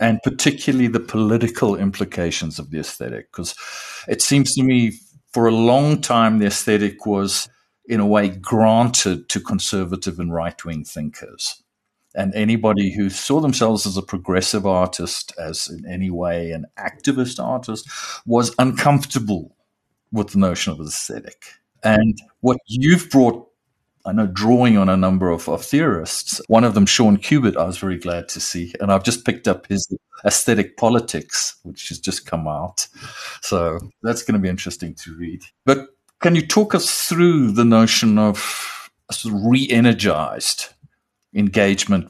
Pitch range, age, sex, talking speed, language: 90-120 Hz, 50-69, male, 155 wpm, English